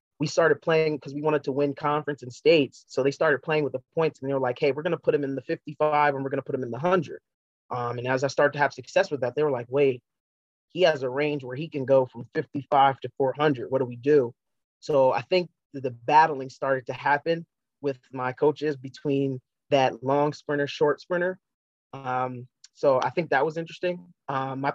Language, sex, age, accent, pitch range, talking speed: English, male, 30-49, American, 135-160 Hz, 235 wpm